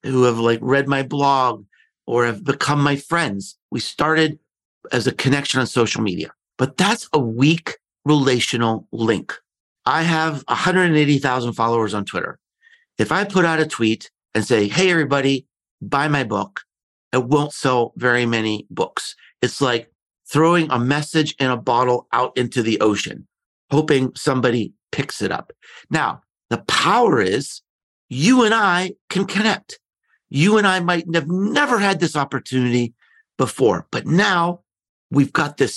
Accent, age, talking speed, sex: American, 50-69, 155 wpm, male